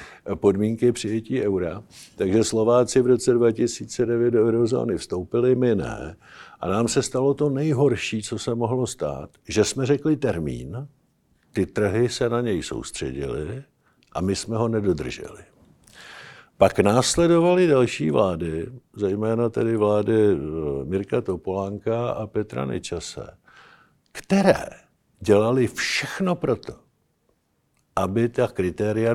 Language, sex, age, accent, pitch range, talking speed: Czech, male, 60-79, native, 105-130 Hz, 115 wpm